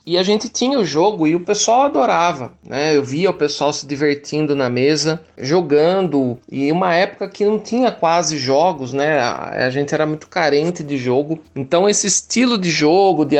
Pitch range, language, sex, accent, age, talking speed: 155-205 Hz, Portuguese, male, Brazilian, 40-59, 195 wpm